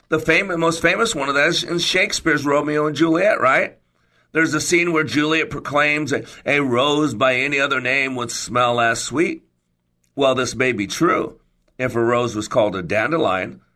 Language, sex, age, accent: English, male, 50-69, American